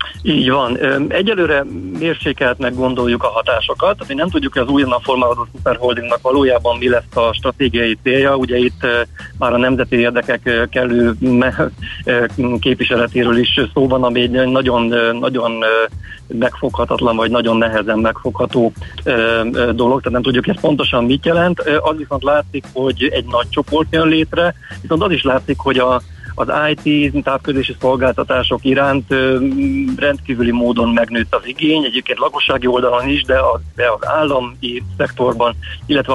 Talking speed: 140 wpm